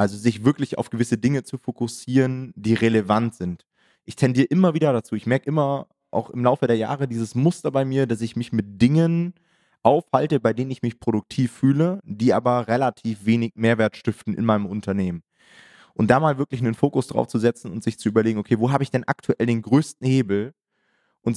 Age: 20-39